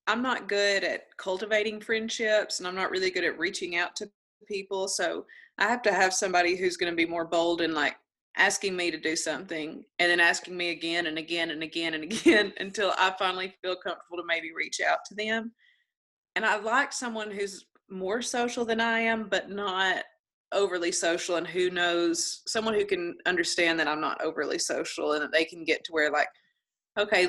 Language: English